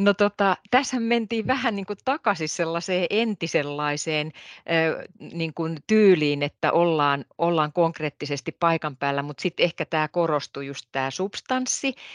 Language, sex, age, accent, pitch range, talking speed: Finnish, female, 40-59, native, 145-185 Hz, 120 wpm